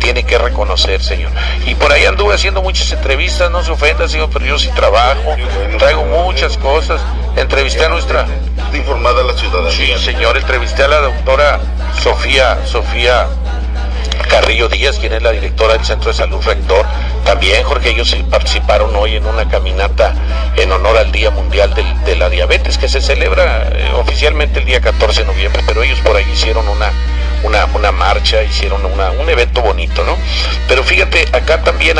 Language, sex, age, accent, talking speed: English, male, 50-69, Mexican, 170 wpm